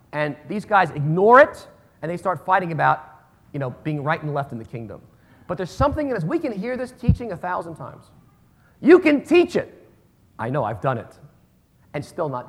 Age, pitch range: 40-59, 115-170 Hz